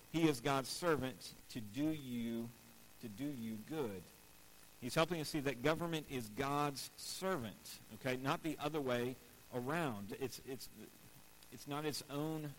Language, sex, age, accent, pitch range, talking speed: English, male, 50-69, American, 105-140 Hz, 155 wpm